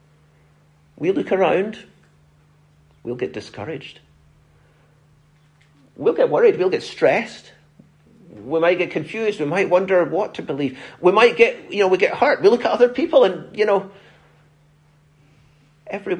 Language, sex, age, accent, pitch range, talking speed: English, male, 50-69, British, 115-180 Hz, 145 wpm